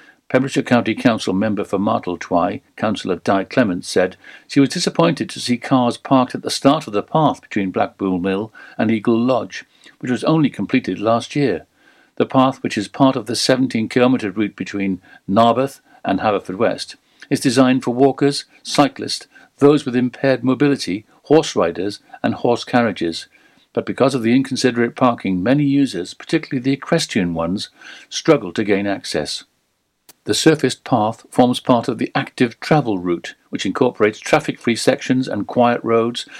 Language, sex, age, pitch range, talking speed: English, male, 60-79, 105-140 Hz, 160 wpm